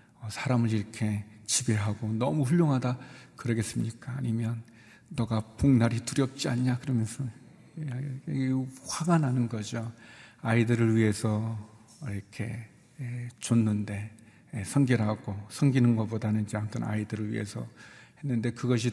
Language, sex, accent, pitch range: Korean, male, native, 110-135 Hz